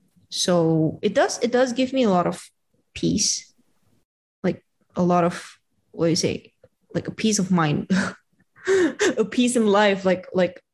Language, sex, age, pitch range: Indonesian, female, 20-39, 170-205 Hz